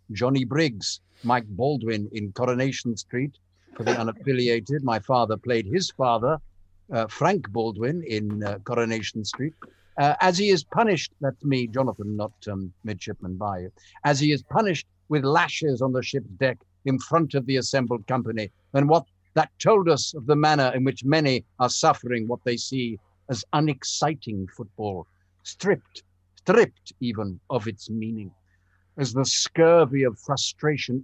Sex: male